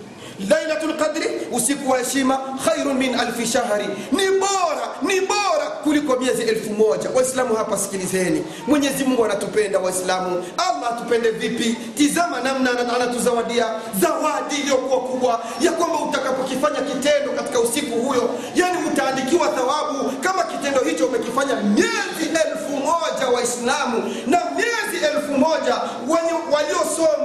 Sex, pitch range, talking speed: male, 240-310 Hz, 125 wpm